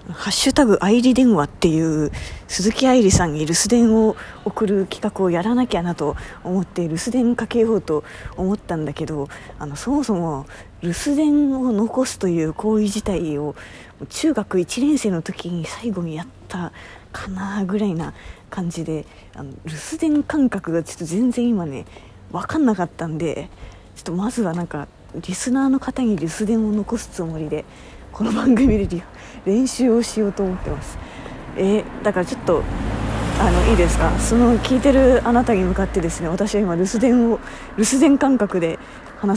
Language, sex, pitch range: Japanese, female, 170-230 Hz